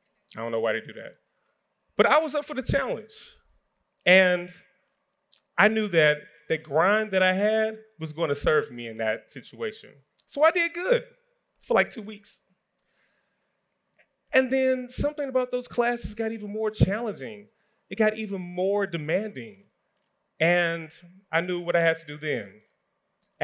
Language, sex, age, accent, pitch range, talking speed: English, male, 30-49, American, 130-205 Hz, 165 wpm